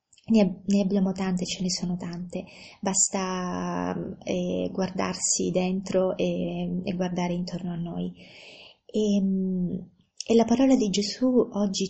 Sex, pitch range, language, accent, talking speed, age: female, 180-200 Hz, Italian, native, 120 wpm, 20-39